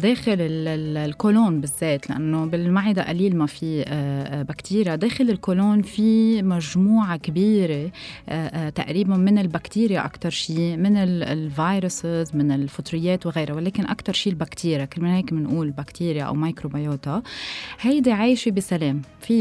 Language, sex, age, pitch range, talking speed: Arabic, female, 20-39, 160-205 Hz, 125 wpm